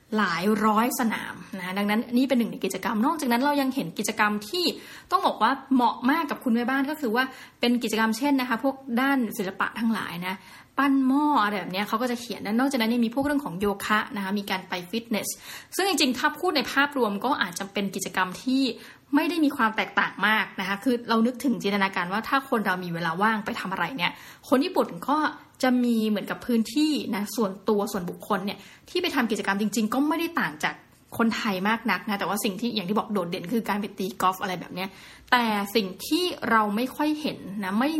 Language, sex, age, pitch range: Thai, female, 20-39, 200-260 Hz